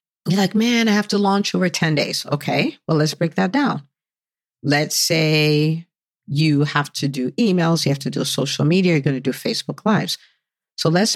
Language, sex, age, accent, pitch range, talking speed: English, female, 50-69, American, 150-195 Hz, 195 wpm